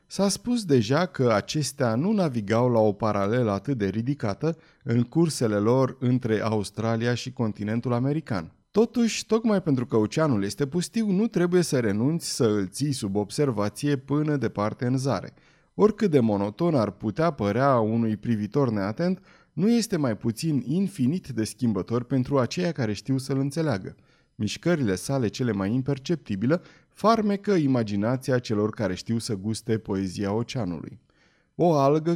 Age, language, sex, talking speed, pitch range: 30-49, Romanian, male, 145 wpm, 110-150 Hz